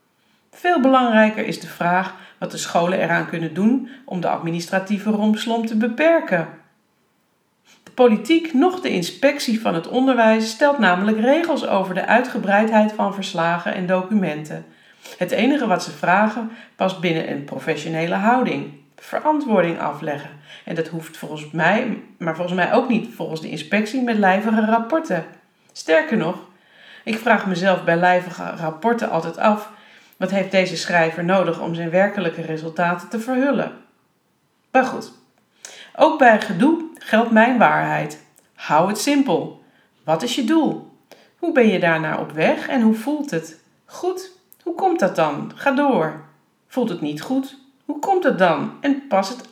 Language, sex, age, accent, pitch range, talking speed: Dutch, female, 40-59, Dutch, 175-255 Hz, 155 wpm